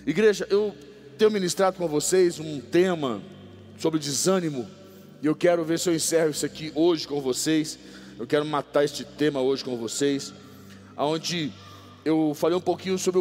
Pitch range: 145-185 Hz